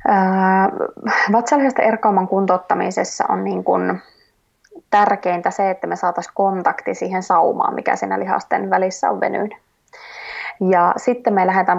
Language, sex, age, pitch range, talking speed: Finnish, female, 20-39, 180-210 Hz, 125 wpm